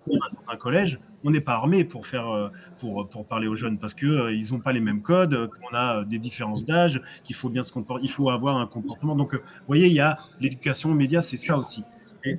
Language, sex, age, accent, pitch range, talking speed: French, male, 30-49, French, 115-150 Hz, 235 wpm